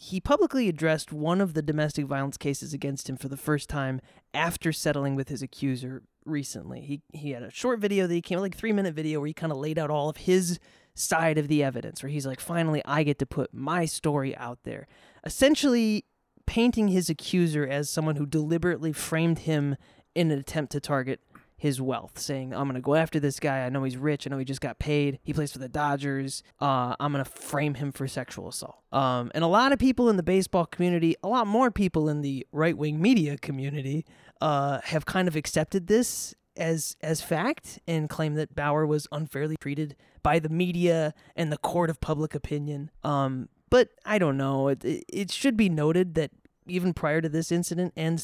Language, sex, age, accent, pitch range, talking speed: English, male, 20-39, American, 140-175 Hz, 210 wpm